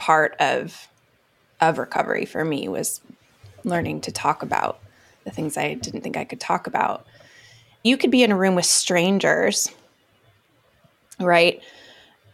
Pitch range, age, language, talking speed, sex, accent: 170-200 Hz, 20-39, English, 140 wpm, female, American